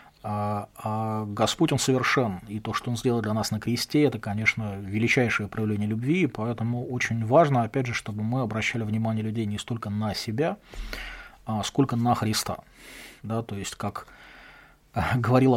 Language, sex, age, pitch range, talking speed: English, male, 30-49, 110-130 Hz, 150 wpm